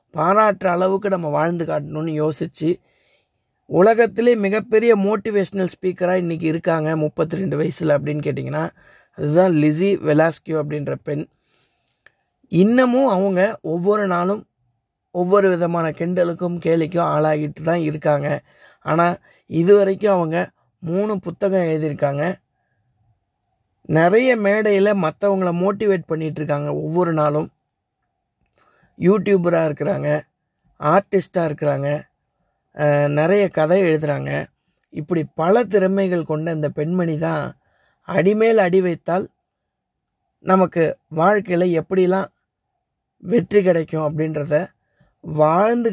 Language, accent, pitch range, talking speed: Tamil, native, 150-190 Hz, 90 wpm